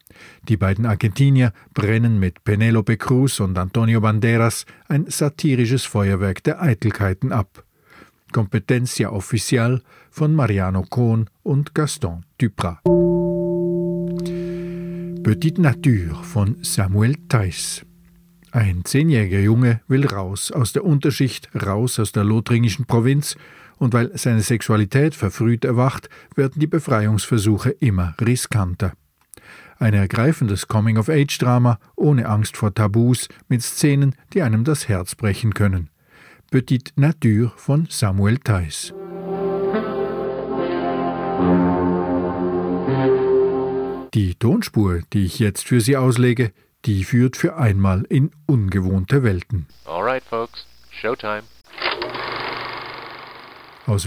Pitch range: 105-140 Hz